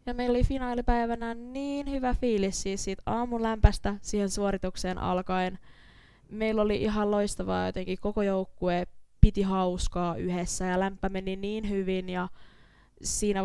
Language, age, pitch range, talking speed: Finnish, 20-39, 170-200 Hz, 135 wpm